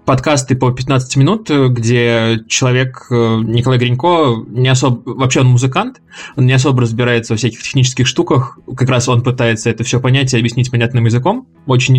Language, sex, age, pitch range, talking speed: Russian, male, 20-39, 115-130 Hz, 165 wpm